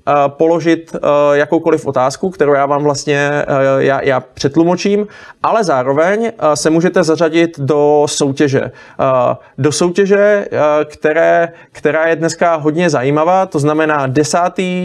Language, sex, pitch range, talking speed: Czech, male, 150-170 Hz, 115 wpm